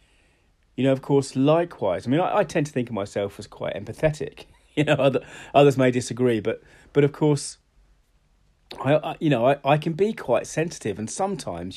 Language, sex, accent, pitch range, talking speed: English, male, British, 105-140 Hz, 200 wpm